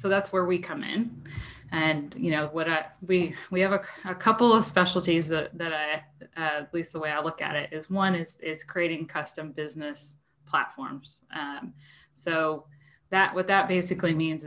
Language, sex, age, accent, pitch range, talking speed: English, female, 20-39, American, 145-165 Hz, 190 wpm